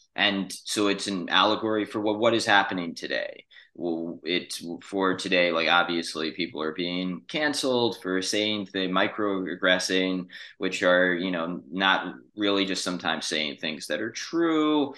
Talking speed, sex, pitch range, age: 150 wpm, male, 90-105 Hz, 20-39